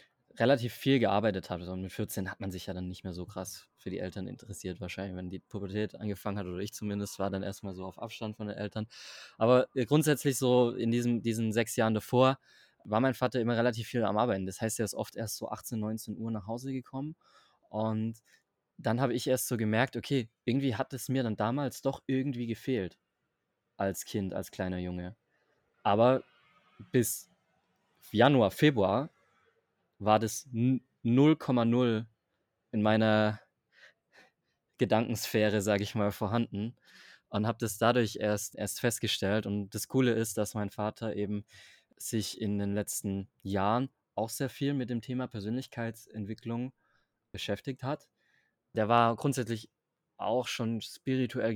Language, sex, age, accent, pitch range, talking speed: German, male, 20-39, German, 100-125 Hz, 160 wpm